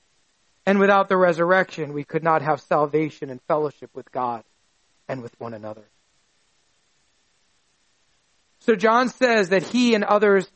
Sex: male